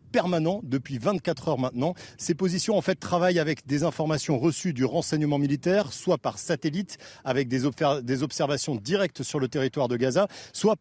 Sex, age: male, 40-59